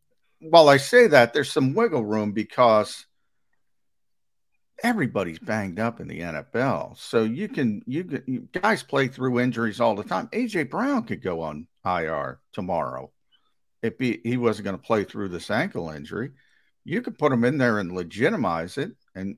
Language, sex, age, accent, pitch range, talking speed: English, male, 50-69, American, 105-140 Hz, 170 wpm